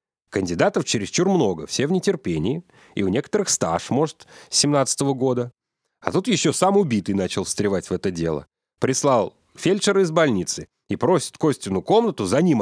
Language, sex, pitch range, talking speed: Russian, male, 120-175 Hz, 160 wpm